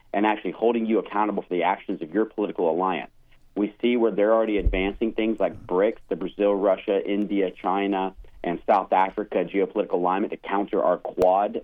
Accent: American